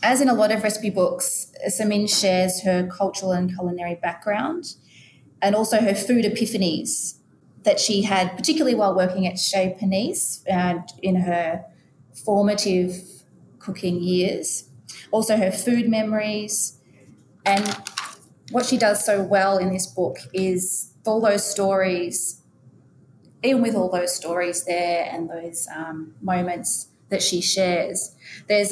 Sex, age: female, 30-49